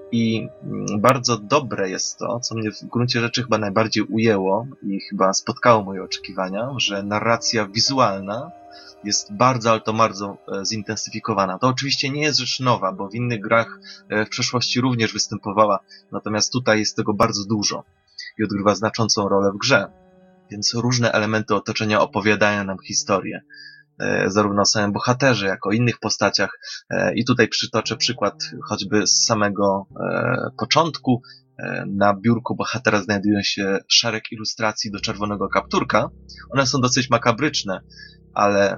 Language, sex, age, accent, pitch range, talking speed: Polish, male, 20-39, native, 105-125 Hz, 140 wpm